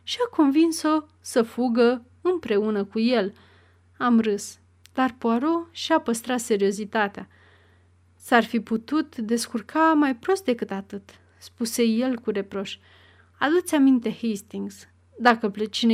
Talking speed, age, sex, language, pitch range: 120 wpm, 30-49, female, Romanian, 200-260 Hz